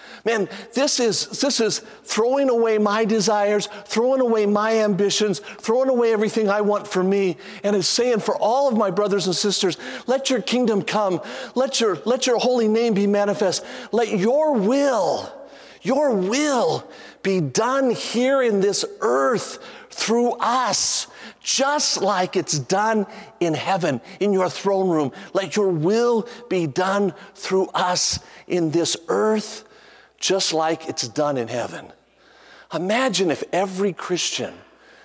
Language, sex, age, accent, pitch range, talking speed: English, male, 50-69, American, 160-220 Hz, 145 wpm